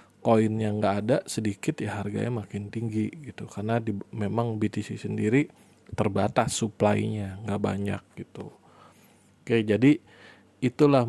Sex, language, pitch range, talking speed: male, Indonesian, 105-120 Hz, 130 wpm